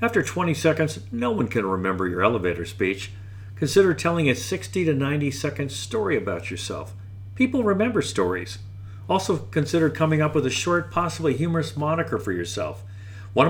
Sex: male